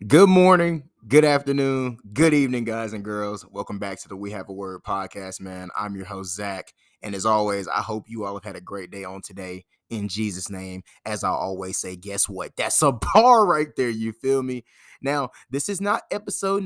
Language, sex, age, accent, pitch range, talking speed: English, male, 20-39, American, 100-135 Hz, 215 wpm